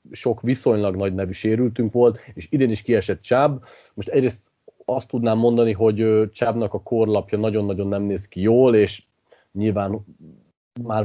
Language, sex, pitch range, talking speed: Hungarian, male, 105-130 Hz, 150 wpm